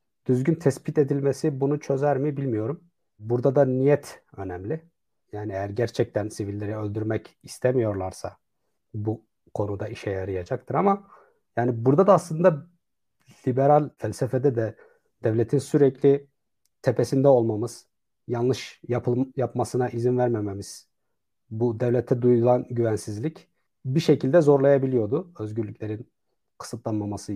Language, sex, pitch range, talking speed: Turkish, male, 105-140 Hz, 105 wpm